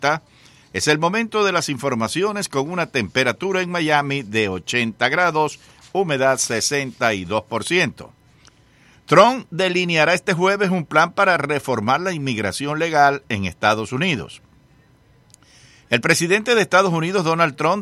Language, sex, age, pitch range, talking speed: English, male, 60-79, 135-170 Hz, 125 wpm